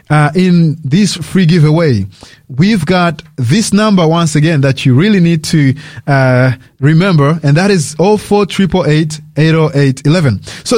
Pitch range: 150-185 Hz